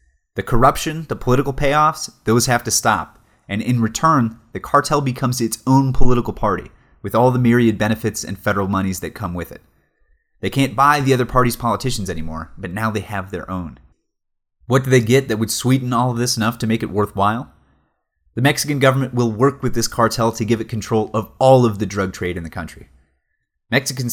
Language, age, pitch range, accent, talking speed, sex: English, 30-49, 100-130 Hz, American, 205 wpm, male